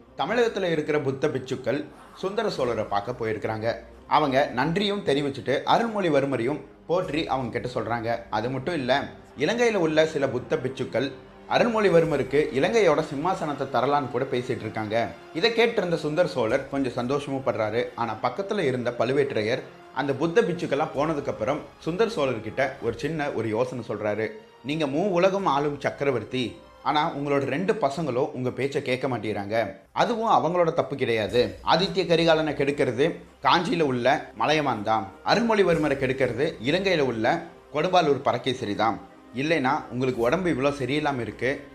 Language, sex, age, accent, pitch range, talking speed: Tamil, male, 30-49, native, 125-160 Hz, 125 wpm